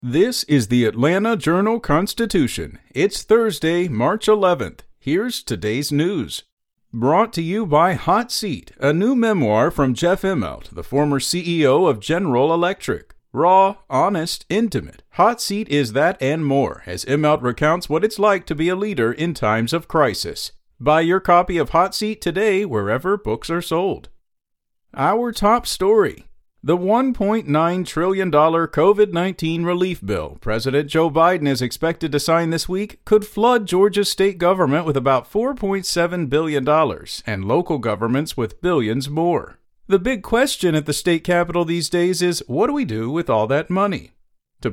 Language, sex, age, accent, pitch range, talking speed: English, male, 50-69, American, 145-200 Hz, 155 wpm